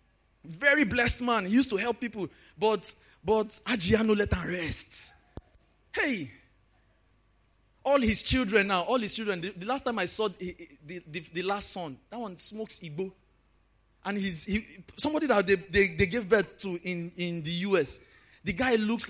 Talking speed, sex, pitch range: 175 wpm, male, 185-250 Hz